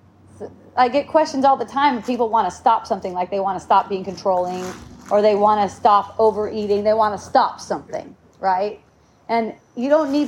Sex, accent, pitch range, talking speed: female, American, 215-280 Hz, 200 wpm